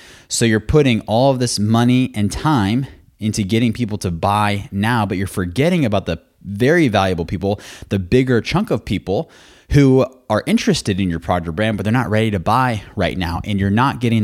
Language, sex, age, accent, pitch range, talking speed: English, male, 20-39, American, 95-125 Hz, 200 wpm